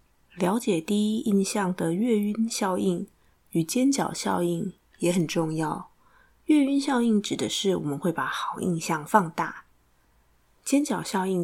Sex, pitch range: female, 165-215 Hz